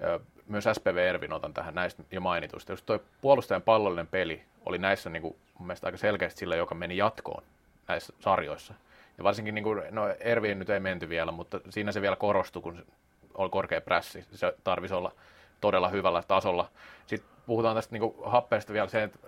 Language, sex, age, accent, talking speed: Finnish, male, 30-49, native, 185 wpm